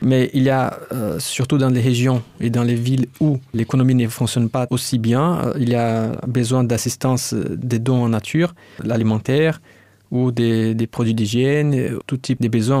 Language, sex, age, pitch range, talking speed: French, male, 20-39, 120-135 Hz, 190 wpm